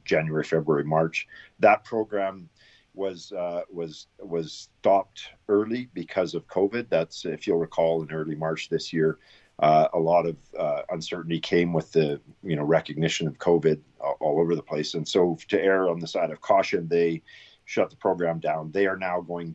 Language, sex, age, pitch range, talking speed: English, male, 50-69, 80-95 Hz, 185 wpm